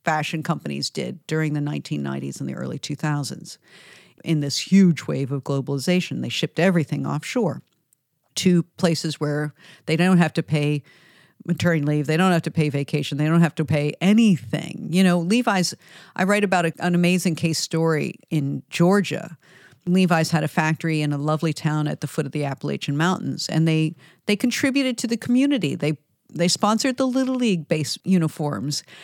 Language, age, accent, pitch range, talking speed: English, 50-69, American, 155-195 Hz, 175 wpm